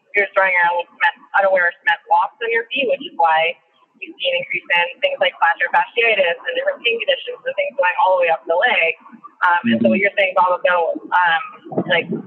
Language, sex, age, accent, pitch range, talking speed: English, female, 20-39, American, 195-305 Hz, 225 wpm